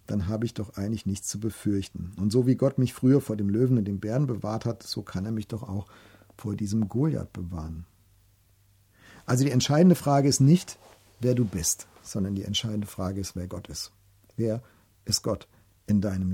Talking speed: 200 wpm